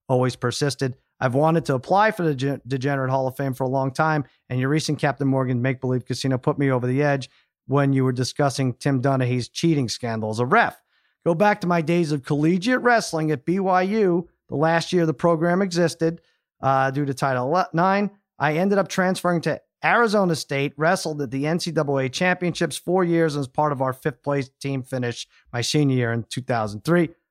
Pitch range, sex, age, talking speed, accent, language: 135-170 Hz, male, 40-59, 195 wpm, American, English